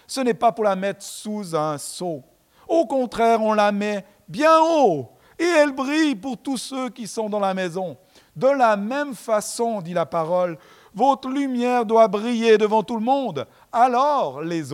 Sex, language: male, French